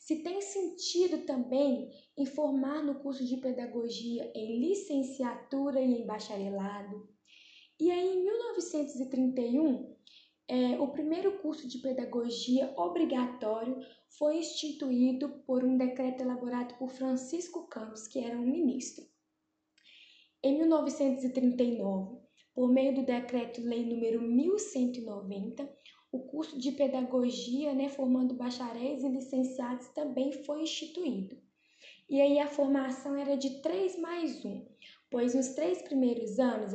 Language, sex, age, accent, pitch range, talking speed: Portuguese, female, 10-29, Brazilian, 245-290 Hz, 120 wpm